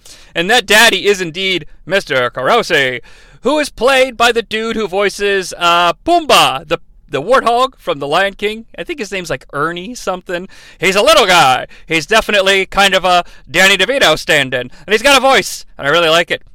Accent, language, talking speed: American, English, 190 wpm